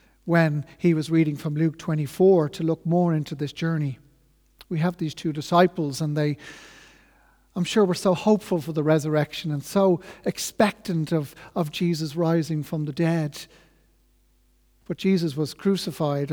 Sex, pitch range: male, 150-175 Hz